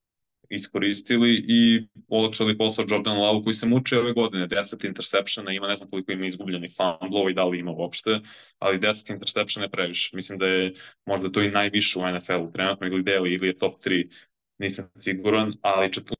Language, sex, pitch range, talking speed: Croatian, male, 95-105 Hz, 185 wpm